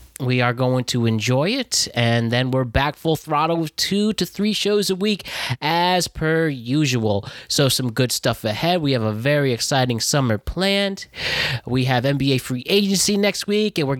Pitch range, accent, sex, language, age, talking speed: 120-160 Hz, American, male, English, 20-39, 185 wpm